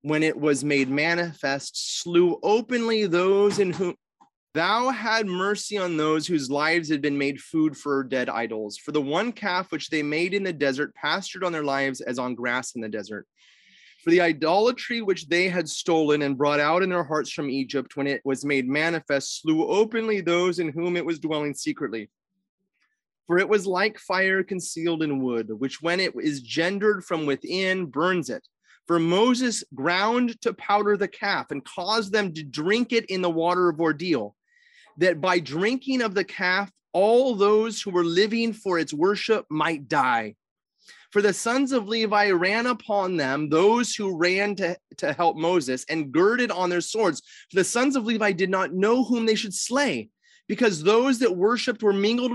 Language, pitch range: English, 155-215 Hz